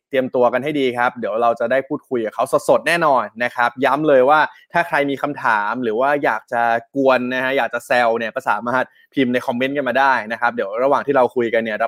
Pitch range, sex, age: 120-150 Hz, male, 20-39